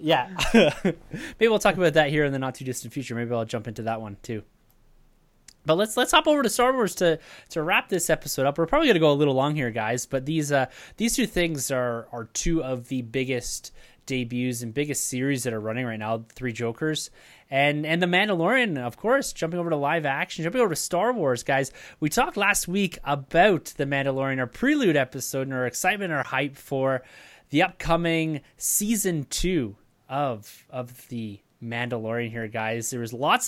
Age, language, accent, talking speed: 20-39, English, American, 200 wpm